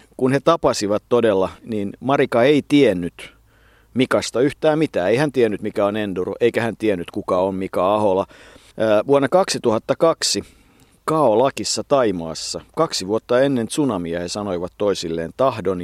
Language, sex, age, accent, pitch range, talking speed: Finnish, male, 50-69, native, 100-140 Hz, 135 wpm